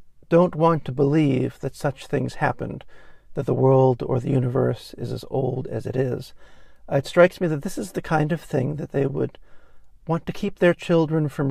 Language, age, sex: English, 50-69, male